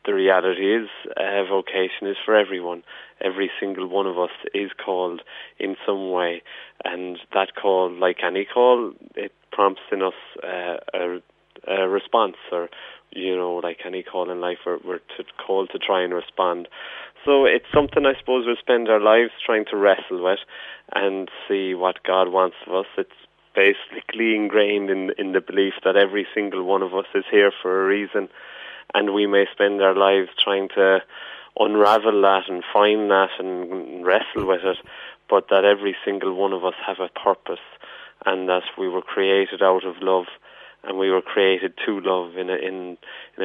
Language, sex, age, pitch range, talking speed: English, male, 30-49, 90-100 Hz, 180 wpm